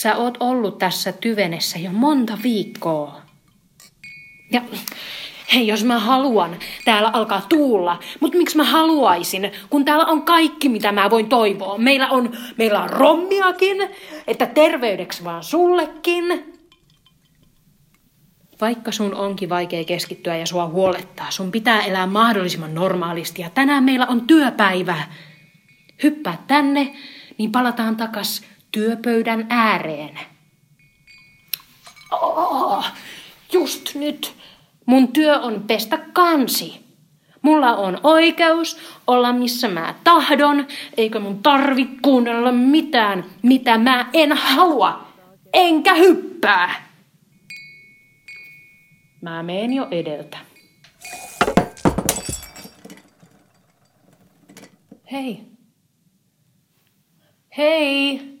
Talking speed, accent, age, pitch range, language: 95 wpm, native, 30-49, 175-280 Hz, Finnish